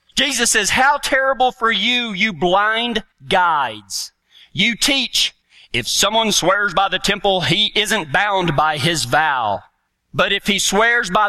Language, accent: English, American